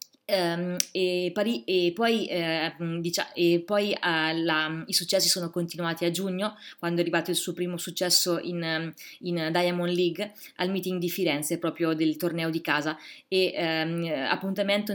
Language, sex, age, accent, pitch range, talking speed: Italian, female, 20-39, native, 165-185 Hz, 165 wpm